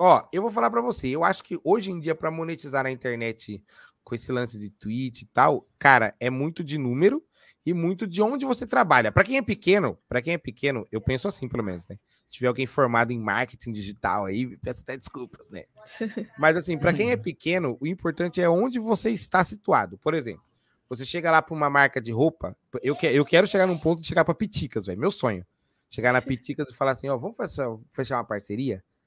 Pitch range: 115-170 Hz